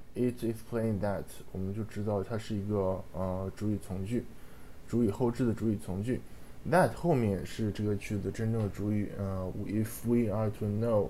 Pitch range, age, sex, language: 100-120 Hz, 20-39, male, Japanese